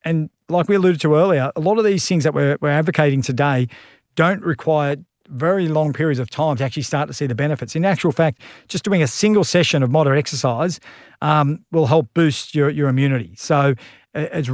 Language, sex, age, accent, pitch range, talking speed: English, male, 40-59, Australian, 140-160 Hz, 205 wpm